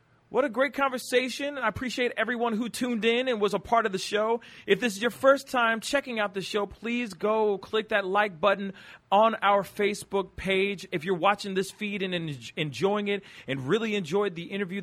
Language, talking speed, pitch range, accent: English, 200 wpm, 135-210 Hz, American